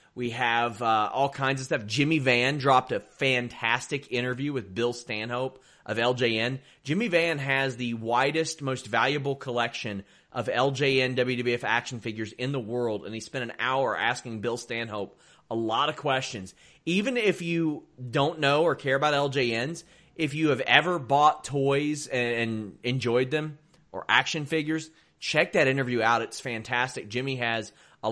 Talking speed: 160 wpm